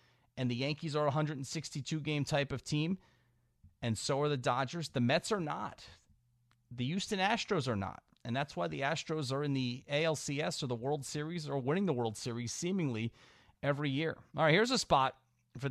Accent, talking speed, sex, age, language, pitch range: American, 190 wpm, male, 40-59, English, 120-155 Hz